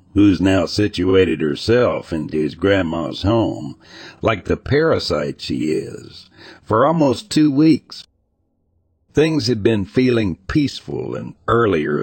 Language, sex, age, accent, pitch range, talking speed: English, male, 60-79, American, 90-110 Hz, 120 wpm